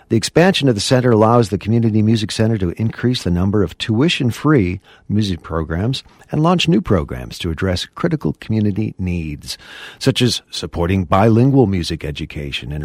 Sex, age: male, 50-69